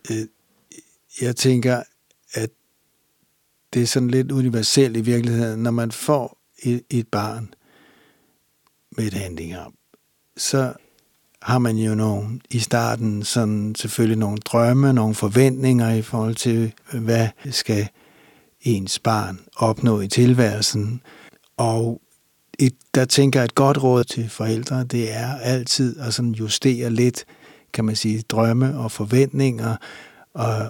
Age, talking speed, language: 60-79, 125 wpm, Danish